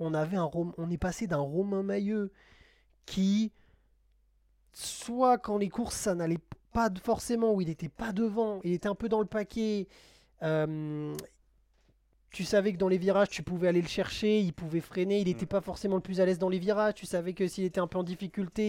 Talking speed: 200 wpm